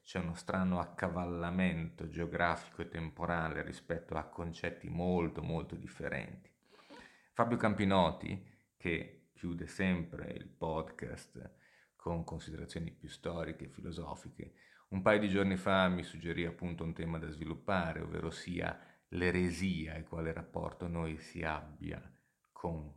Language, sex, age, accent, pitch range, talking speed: Italian, male, 30-49, native, 80-95 Hz, 125 wpm